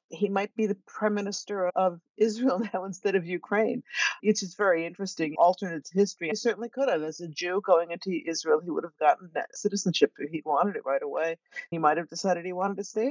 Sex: female